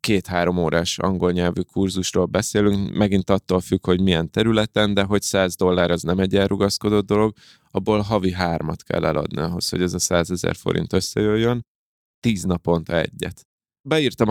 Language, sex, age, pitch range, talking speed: Hungarian, male, 20-39, 90-100 Hz, 155 wpm